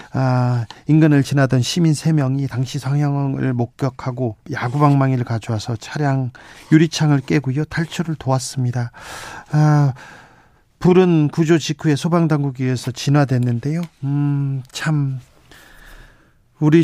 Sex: male